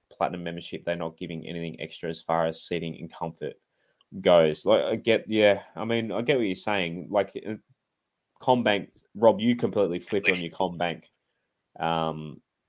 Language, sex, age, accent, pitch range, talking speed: English, male, 20-39, Australian, 85-110 Hz, 165 wpm